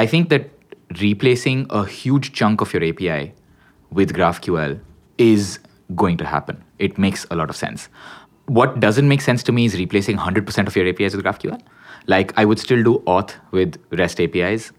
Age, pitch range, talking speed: 20-39, 90-125 Hz, 185 wpm